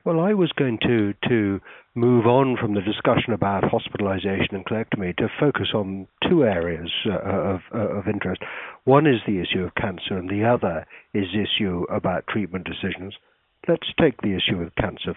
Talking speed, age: 180 wpm, 60-79